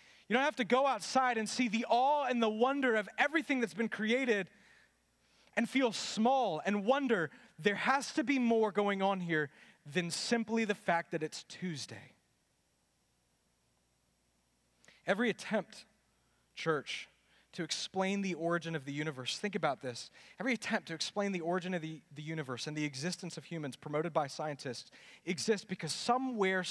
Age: 30-49